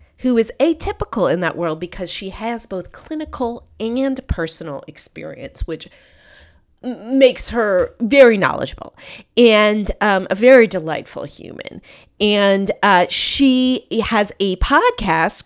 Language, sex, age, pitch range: English, female, 40-59, 165-230 Hz